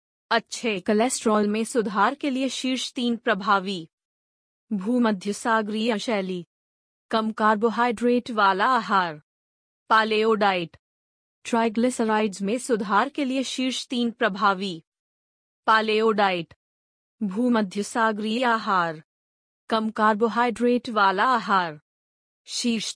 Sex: female